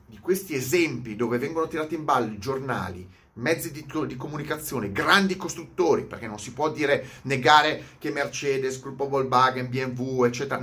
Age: 30-49